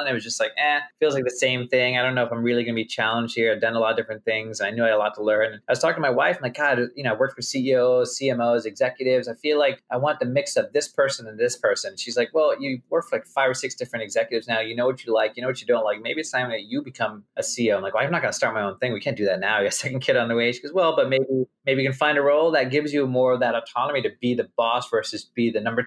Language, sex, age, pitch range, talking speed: English, male, 30-49, 115-150 Hz, 340 wpm